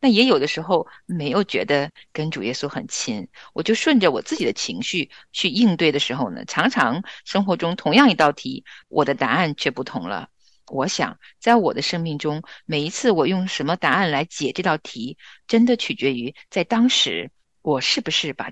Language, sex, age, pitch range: Chinese, female, 50-69, 150-220 Hz